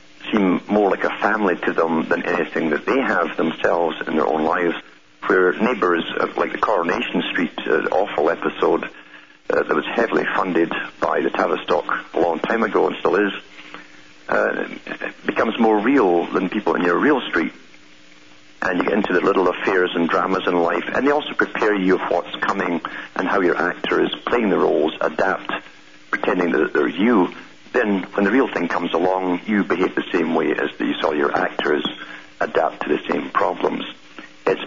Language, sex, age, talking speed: English, male, 50-69, 185 wpm